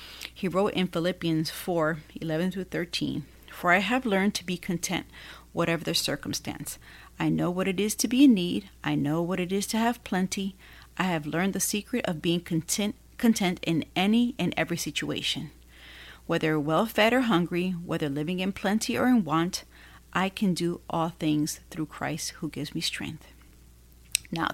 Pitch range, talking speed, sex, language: 150-190 Hz, 170 wpm, female, English